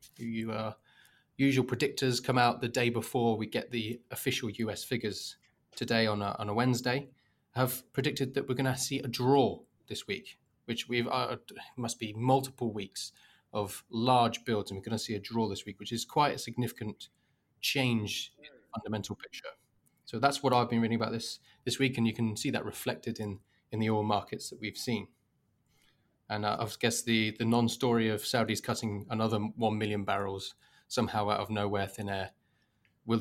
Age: 20-39